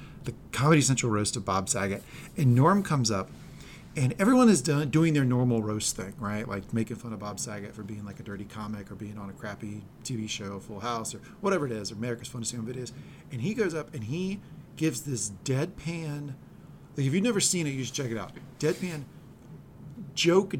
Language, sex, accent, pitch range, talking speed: English, male, American, 110-150 Hz, 215 wpm